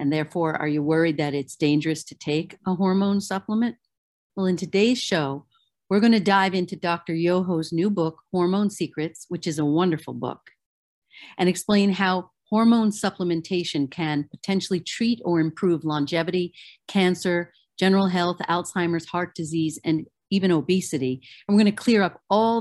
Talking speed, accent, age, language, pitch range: 160 wpm, American, 50-69, English, 160-200 Hz